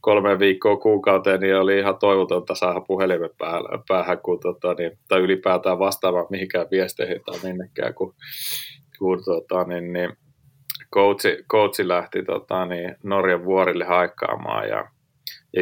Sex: male